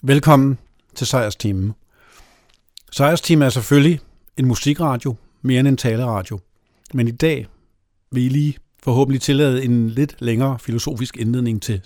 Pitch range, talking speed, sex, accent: 120-150 Hz, 130 wpm, male, native